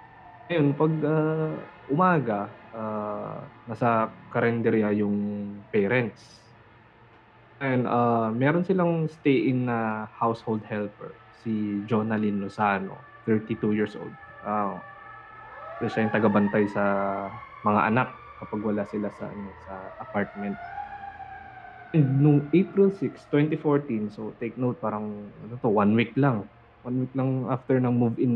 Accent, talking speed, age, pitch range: Filipino, 125 wpm, 20-39, 110-130 Hz